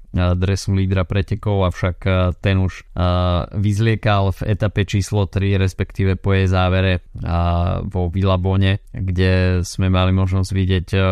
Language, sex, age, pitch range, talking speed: Slovak, male, 20-39, 95-105 Hz, 120 wpm